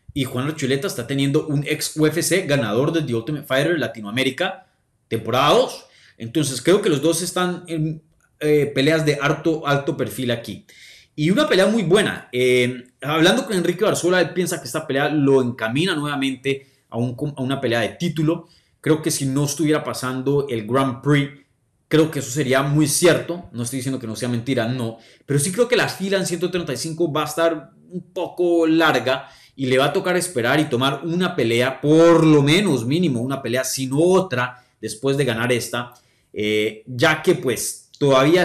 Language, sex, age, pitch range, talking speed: Spanish, male, 30-49, 125-160 Hz, 185 wpm